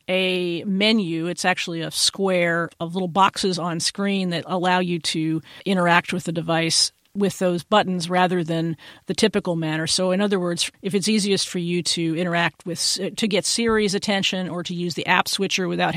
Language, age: English, 50-69